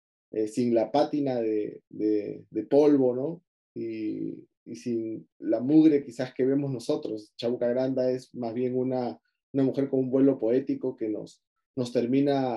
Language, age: Spanish, 30-49